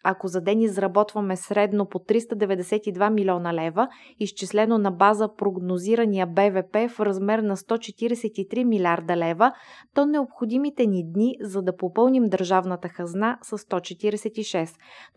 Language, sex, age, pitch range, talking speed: Bulgarian, female, 20-39, 195-240 Hz, 125 wpm